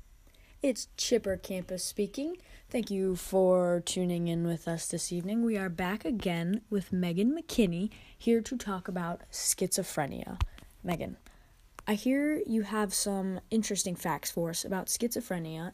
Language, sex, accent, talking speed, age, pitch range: English, female, American, 140 wpm, 20-39, 175-220 Hz